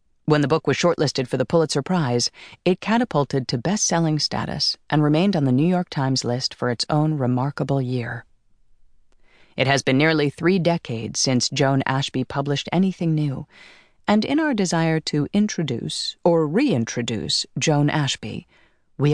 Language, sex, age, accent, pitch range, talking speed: English, female, 40-59, American, 130-170 Hz, 155 wpm